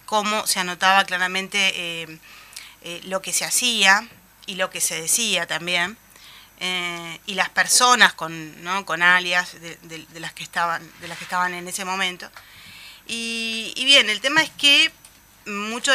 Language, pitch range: Spanish, 180-215 Hz